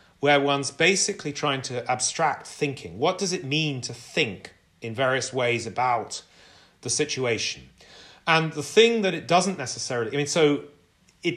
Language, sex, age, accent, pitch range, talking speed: English, male, 40-59, British, 125-160 Hz, 160 wpm